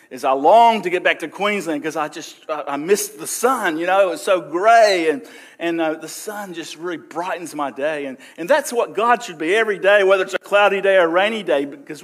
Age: 50-69